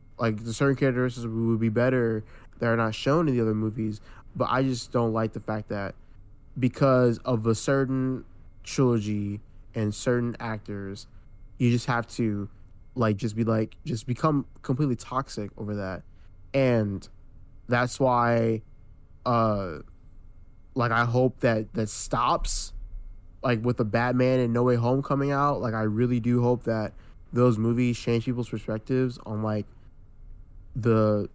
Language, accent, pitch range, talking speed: English, American, 105-125 Hz, 150 wpm